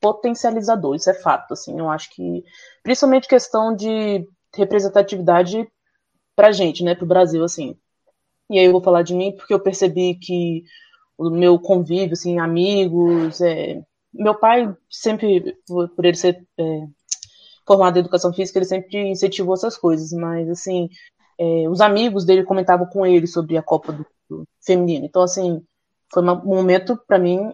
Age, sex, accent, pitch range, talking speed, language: 20-39, female, Brazilian, 175-210 Hz, 160 wpm, Portuguese